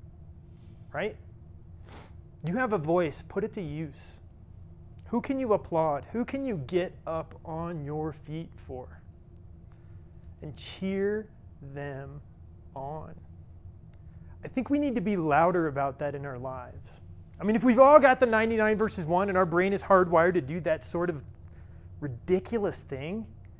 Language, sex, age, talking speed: English, male, 30-49, 155 wpm